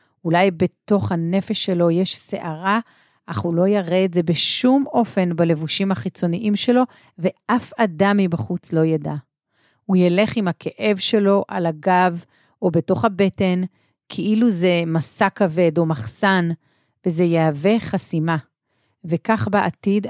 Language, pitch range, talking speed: Hebrew, 170-210 Hz, 130 wpm